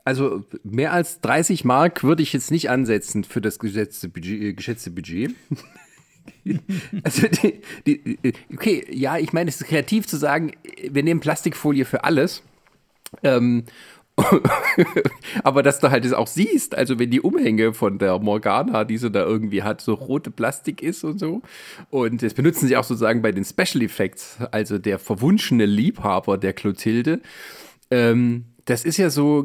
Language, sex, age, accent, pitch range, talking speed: German, male, 40-59, German, 115-165 Hz, 165 wpm